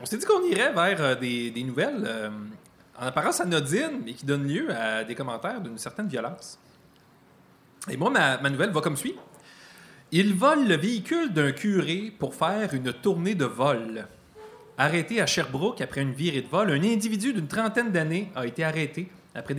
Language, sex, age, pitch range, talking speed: French, male, 30-49, 135-195 Hz, 185 wpm